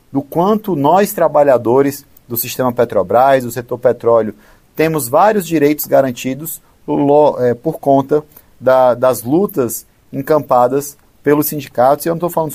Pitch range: 120-150 Hz